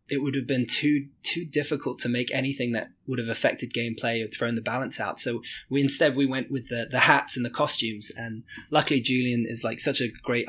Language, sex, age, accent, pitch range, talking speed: English, male, 20-39, British, 115-140 Hz, 230 wpm